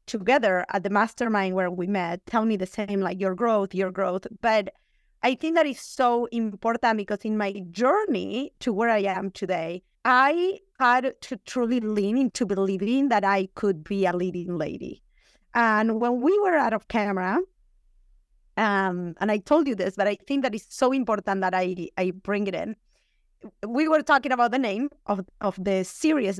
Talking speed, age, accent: 185 wpm, 30-49, Spanish